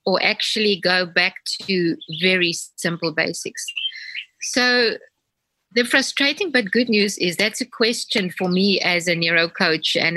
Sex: female